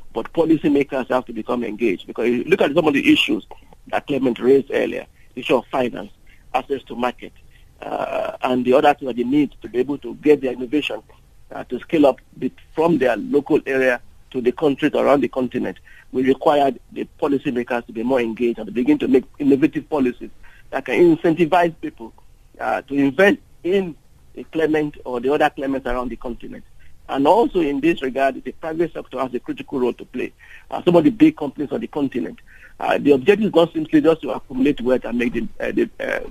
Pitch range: 125-160 Hz